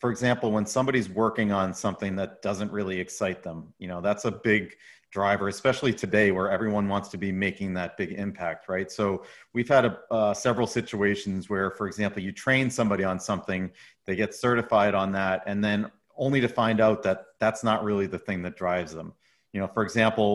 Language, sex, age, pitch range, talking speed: English, male, 40-59, 95-110 Hz, 200 wpm